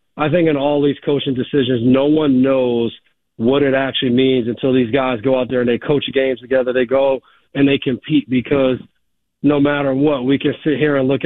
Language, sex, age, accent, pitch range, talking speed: English, male, 40-59, American, 130-145 Hz, 215 wpm